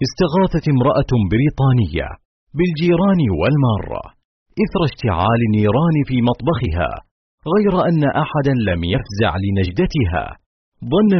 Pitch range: 110-150 Hz